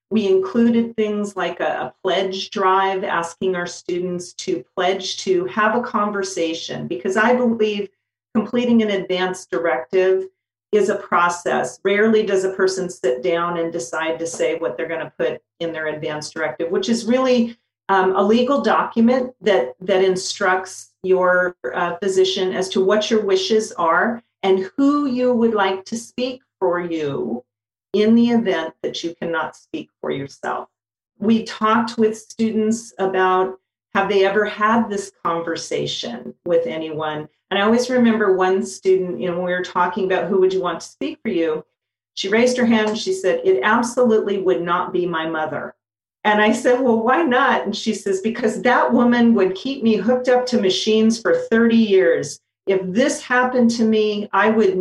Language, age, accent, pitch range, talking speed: English, 40-59, American, 175-225 Hz, 175 wpm